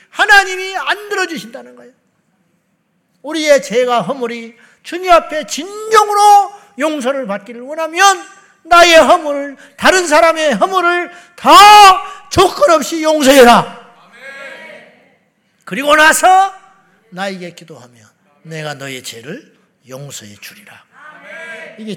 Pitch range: 180-290 Hz